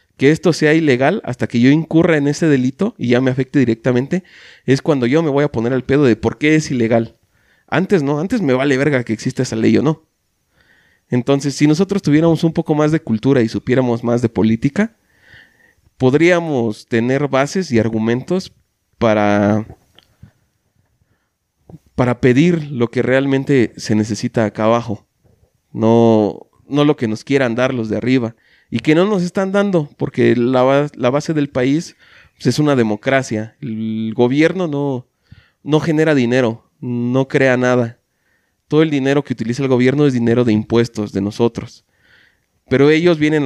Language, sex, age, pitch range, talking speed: Spanish, male, 30-49, 115-145 Hz, 165 wpm